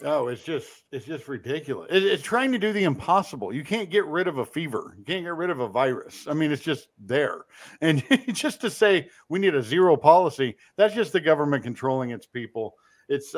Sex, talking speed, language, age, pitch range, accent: male, 215 wpm, English, 50-69, 140-210 Hz, American